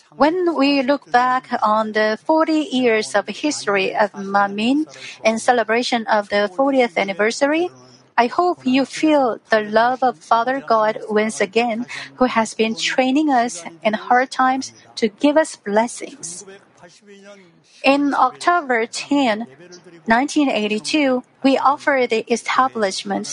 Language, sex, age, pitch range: Korean, female, 40-59, 215-285 Hz